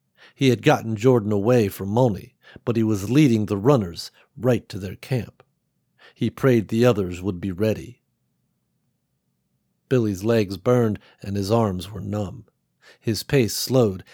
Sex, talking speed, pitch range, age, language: male, 150 wpm, 100-120 Hz, 50-69, English